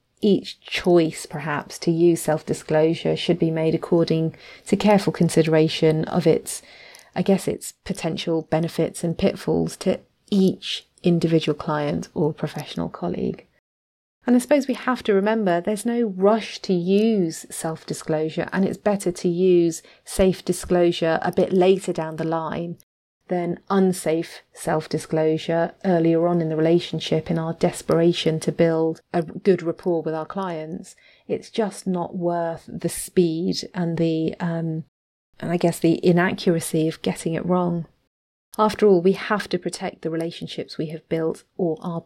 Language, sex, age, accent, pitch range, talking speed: English, female, 30-49, British, 160-185 Hz, 150 wpm